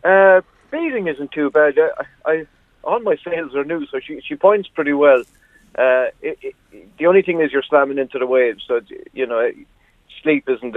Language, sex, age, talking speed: English, male, 50-69, 200 wpm